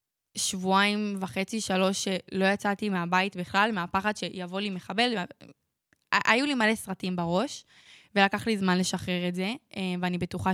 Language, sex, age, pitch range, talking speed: Hebrew, female, 10-29, 175-200 Hz, 140 wpm